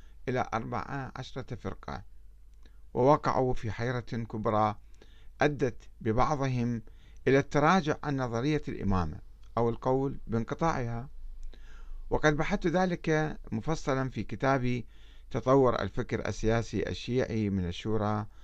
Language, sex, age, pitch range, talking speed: Arabic, male, 50-69, 100-135 Hz, 100 wpm